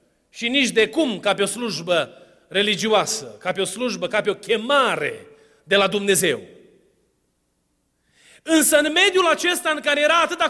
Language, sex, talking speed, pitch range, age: Romanian, male, 160 wpm, 225-305 Hz, 30-49